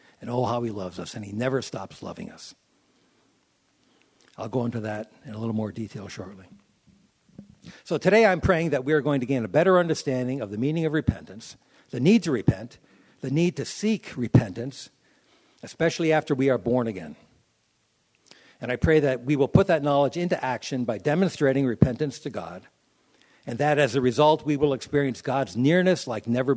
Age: 60-79